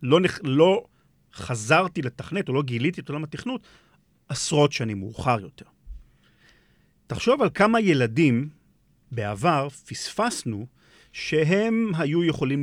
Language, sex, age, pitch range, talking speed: Hebrew, male, 40-59, 120-170 Hz, 115 wpm